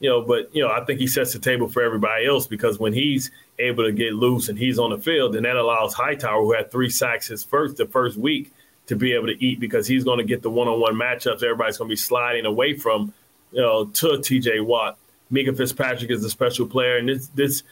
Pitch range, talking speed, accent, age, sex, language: 120-140 Hz, 245 wpm, American, 30-49, male, English